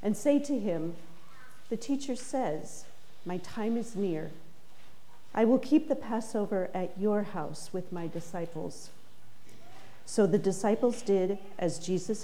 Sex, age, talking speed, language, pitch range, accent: female, 40-59, 135 wpm, English, 165-210 Hz, American